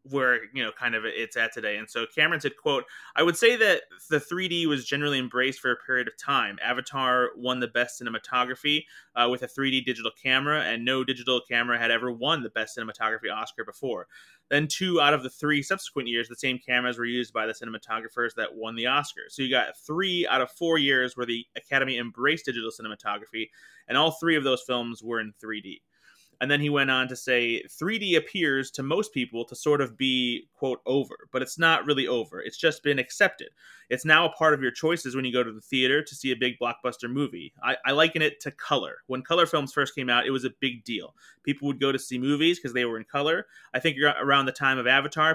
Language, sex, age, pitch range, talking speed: English, male, 20-39, 125-145 Hz, 230 wpm